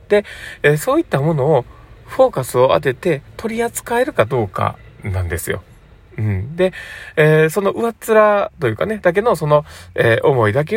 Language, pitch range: Japanese, 105-165 Hz